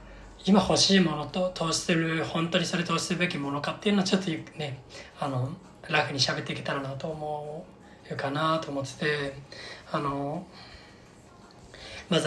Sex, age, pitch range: male, 20-39, 145-185 Hz